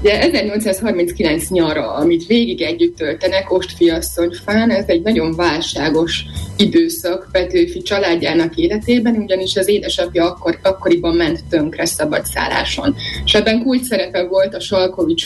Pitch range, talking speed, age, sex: 180-220 Hz, 130 wpm, 20-39, female